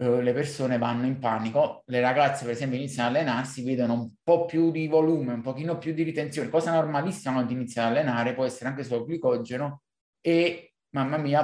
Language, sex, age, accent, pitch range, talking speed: Italian, male, 20-39, native, 130-160 Hz, 195 wpm